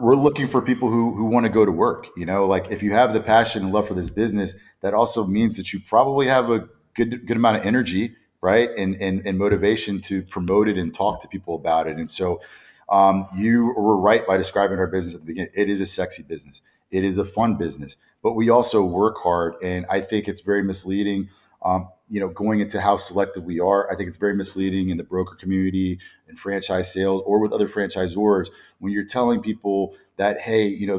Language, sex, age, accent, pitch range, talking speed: English, male, 30-49, American, 95-115 Hz, 230 wpm